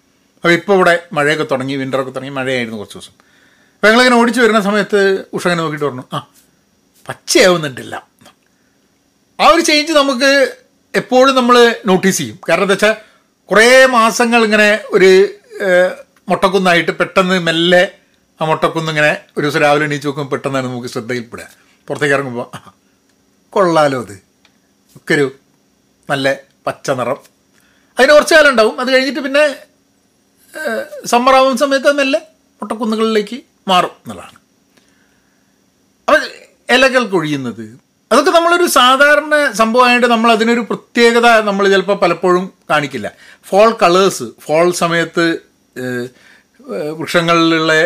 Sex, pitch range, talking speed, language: male, 155-245 Hz, 105 wpm, Malayalam